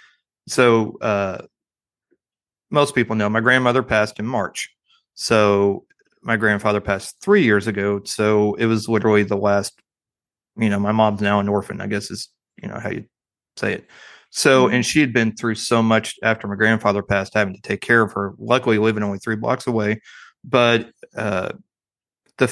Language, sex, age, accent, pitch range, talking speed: English, male, 30-49, American, 105-120 Hz, 175 wpm